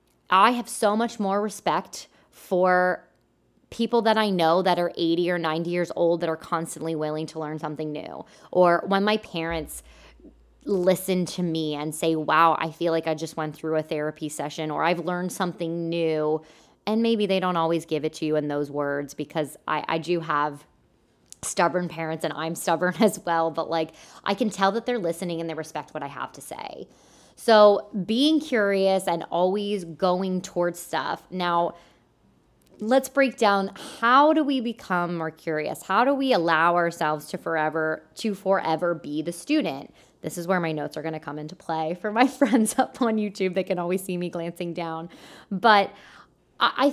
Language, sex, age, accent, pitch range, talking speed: English, female, 20-39, American, 160-210 Hz, 190 wpm